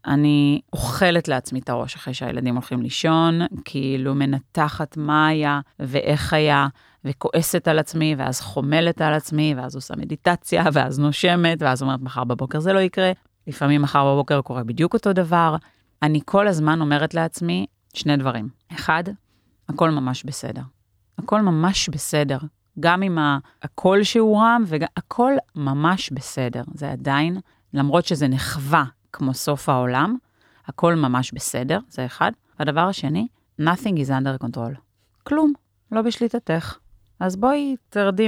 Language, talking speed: Hebrew, 140 wpm